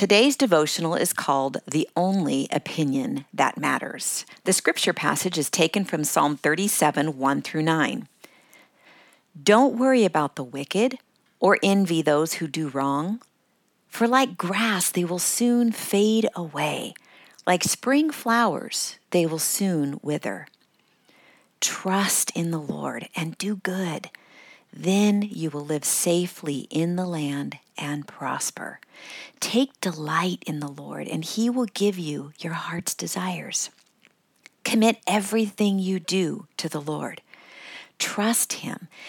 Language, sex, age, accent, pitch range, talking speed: English, female, 50-69, American, 155-215 Hz, 130 wpm